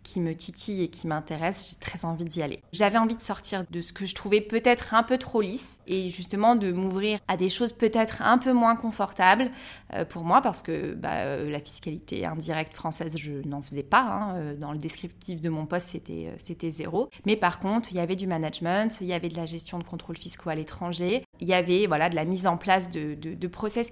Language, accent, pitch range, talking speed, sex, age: French, French, 165-205 Hz, 230 wpm, female, 20-39